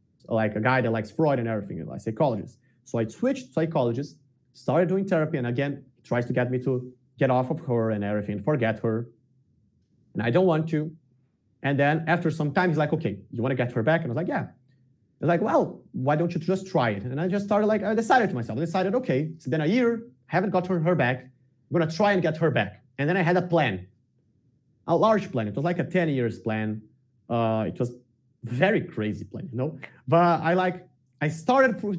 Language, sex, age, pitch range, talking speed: English, male, 30-49, 125-185 Hz, 230 wpm